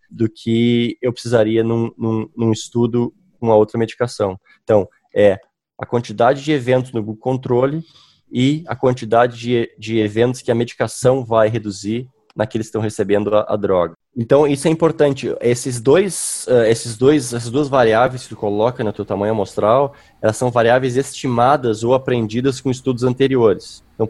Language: Portuguese